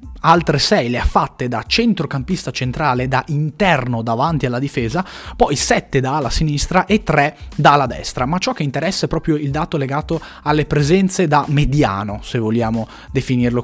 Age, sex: 20-39, male